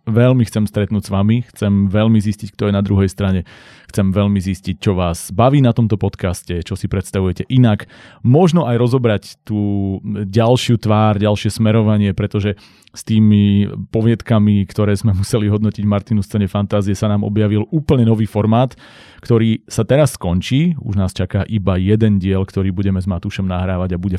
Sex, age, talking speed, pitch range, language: male, 30-49, 170 wpm, 100-115 Hz, Slovak